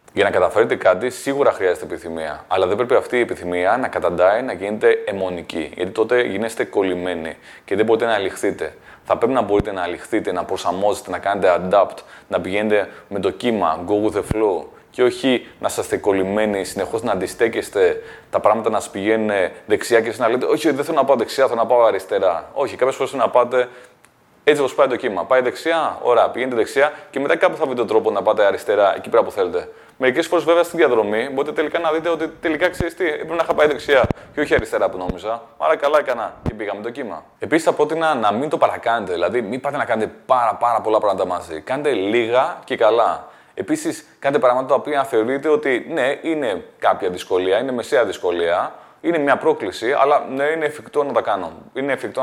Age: 20-39